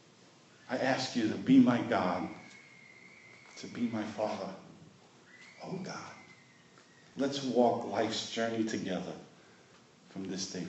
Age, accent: 50-69, American